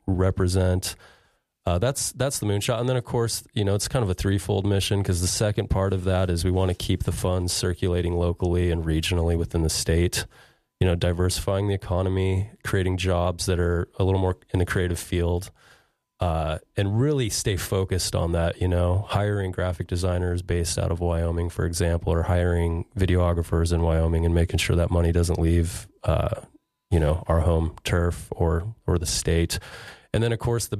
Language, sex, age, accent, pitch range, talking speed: English, male, 30-49, American, 85-100 Hz, 195 wpm